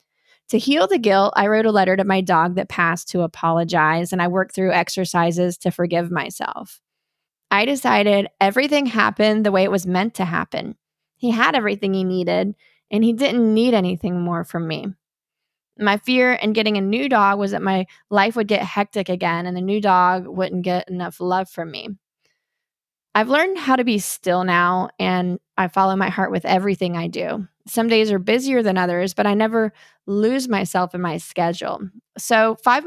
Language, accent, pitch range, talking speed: English, American, 180-220 Hz, 190 wpm